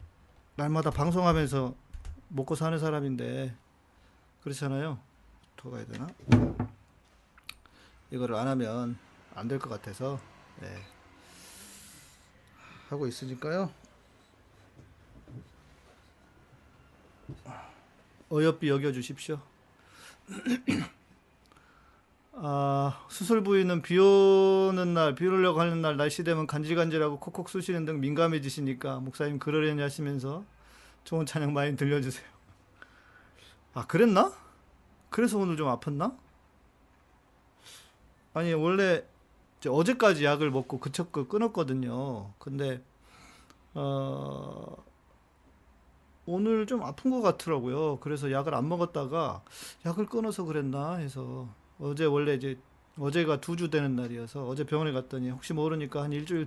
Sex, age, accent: male, 40-59, native